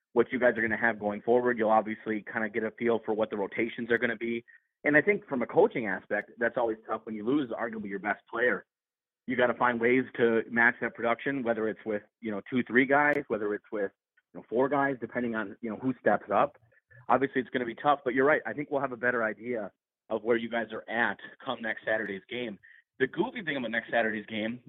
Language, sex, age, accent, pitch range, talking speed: English, male, 30-49, American, 110-130 Hz, 255 wpm